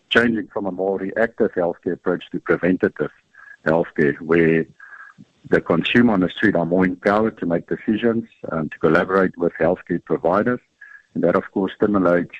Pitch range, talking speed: 85-100 Hz, 160 wpm